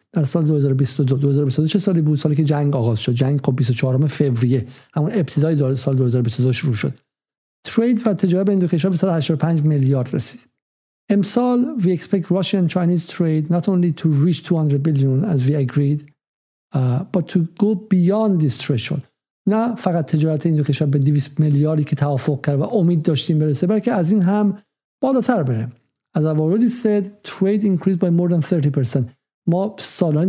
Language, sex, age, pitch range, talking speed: Persian, male, 50-69, 140-190 Hz, 130 wpm